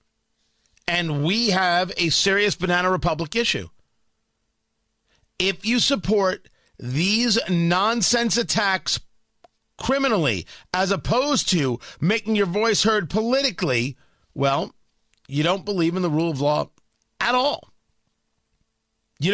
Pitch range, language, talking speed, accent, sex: 155-220 Hz, English, 110 wpm, American, male